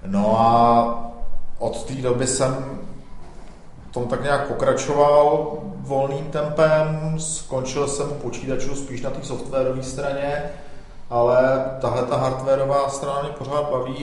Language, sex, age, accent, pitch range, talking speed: Czech, male, 40-59, native, 105-135 Hz, 120 wpm